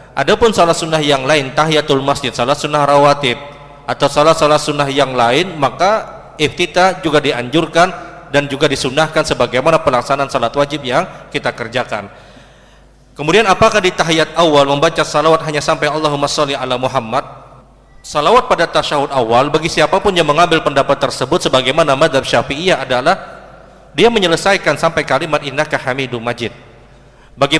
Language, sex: Indonesian, male